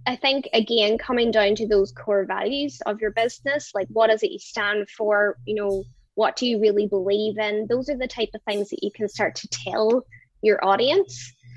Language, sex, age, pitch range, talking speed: English, female, 10-29, 195-220 Hz, 215 wpm